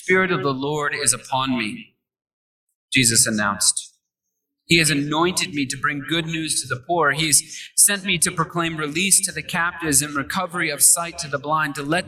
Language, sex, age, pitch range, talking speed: English, male, 30-49, 140-185 Hz, 195 wpm